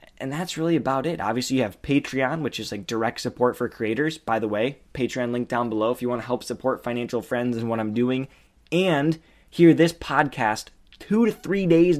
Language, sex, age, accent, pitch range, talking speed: English, male, 20-39, American, 115-145 Hz, 215 wpm